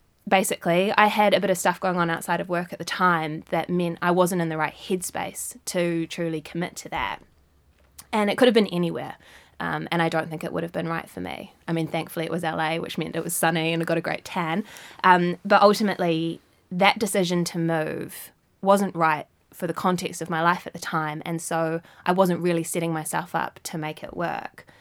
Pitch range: 165-190 Hz